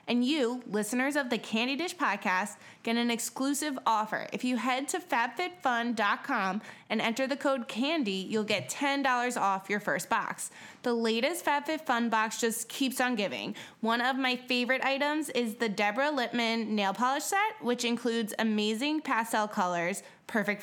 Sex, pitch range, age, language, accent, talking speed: female, 210-260 Hz, 20-39, English, American, 160 wpm